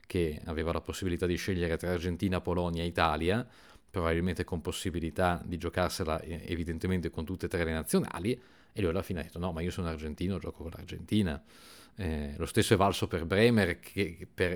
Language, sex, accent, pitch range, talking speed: Italian, male, native, 85-100 Hz, 180 wpm